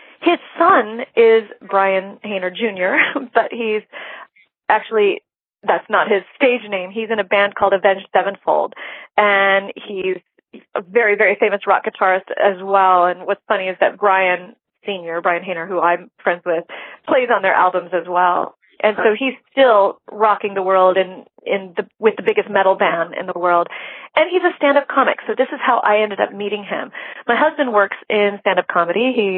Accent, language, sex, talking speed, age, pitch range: American, English, female, 180 wpm, 30-49, 180-225 Hz